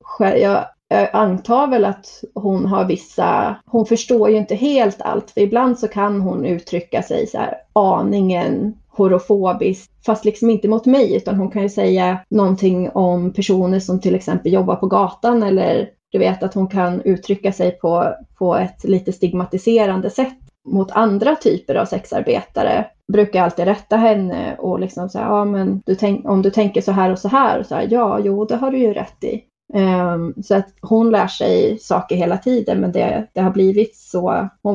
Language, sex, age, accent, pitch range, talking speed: Swedish, female, 30-49, native, 190-220 Hz, 185 wpm